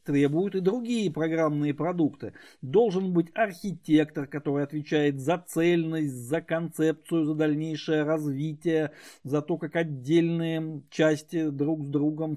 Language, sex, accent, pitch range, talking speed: Russian, male, native, 150-170 Hz, 120 wpm